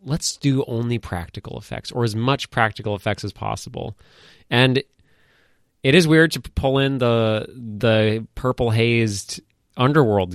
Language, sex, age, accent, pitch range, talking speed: English, male, 20-39, American, 105-135 Hz, 140 wpm